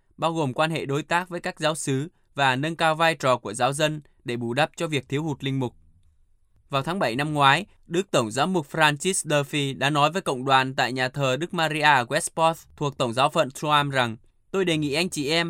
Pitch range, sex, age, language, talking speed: 125-160 Hz, male, 20-39, Vietnamese, 240 wpm